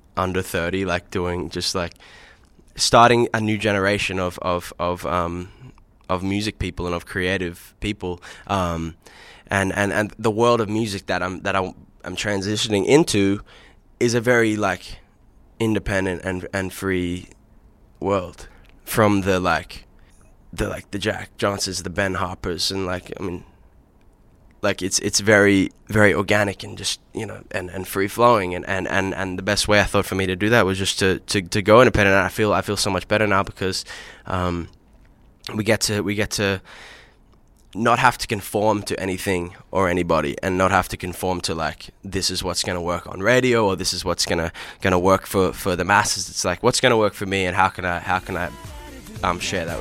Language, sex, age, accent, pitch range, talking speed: English, male, 10-29, Australian, 90-105 Hz, 200 wpm